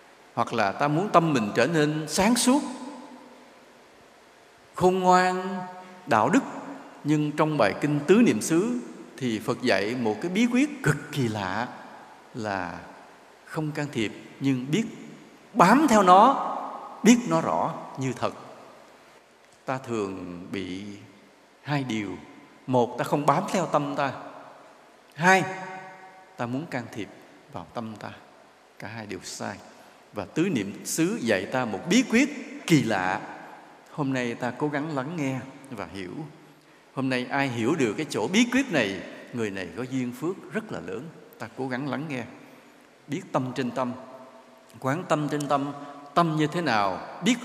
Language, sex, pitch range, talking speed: English, male, 125-180 Hz, 160 wpm